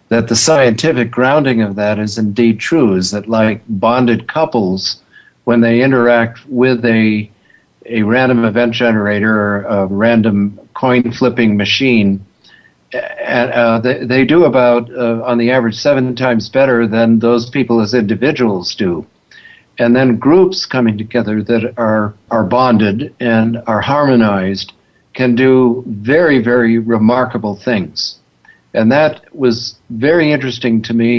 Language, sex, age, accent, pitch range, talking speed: English, male, 60-79, American, 110-125 Hz, 140 wpm